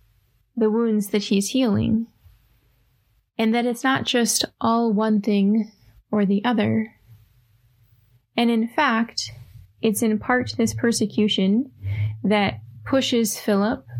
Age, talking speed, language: 20-39, 115 wpm, English